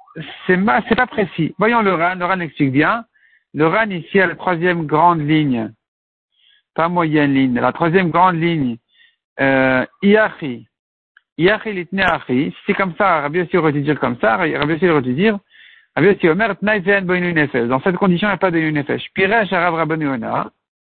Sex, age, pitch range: male, 60-79, 155-210 Hz